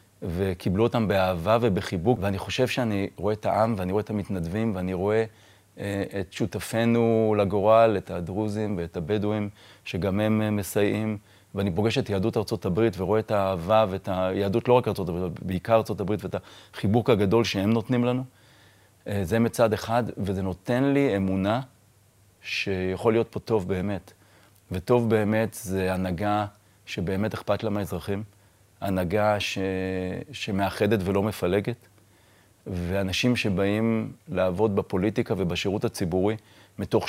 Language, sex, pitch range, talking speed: Hebrew, male, 95-110 Hz, 135 wpm